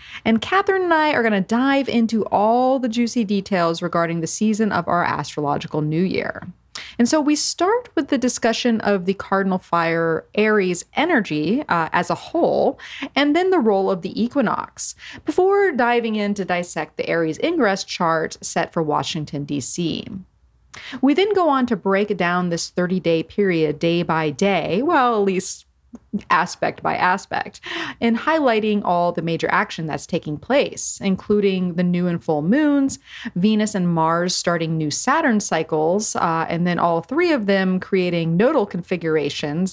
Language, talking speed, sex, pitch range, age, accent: English, 165 wpm, female, 170-240 Hz, 30-49, American